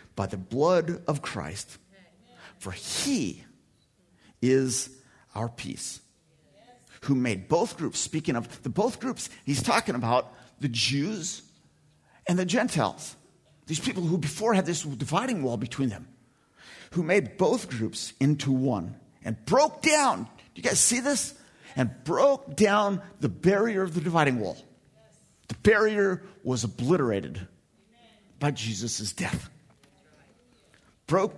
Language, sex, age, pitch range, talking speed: English, male, 50-69, 115-185 Hz, 130 wpm